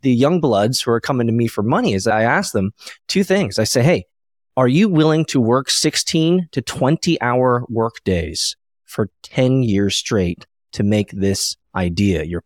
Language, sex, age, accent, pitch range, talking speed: English, male, 20-39, American, 105-160 Hz, 190 wpm